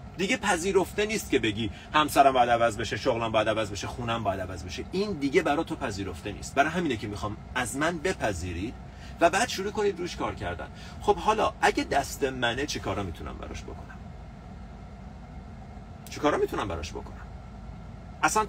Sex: male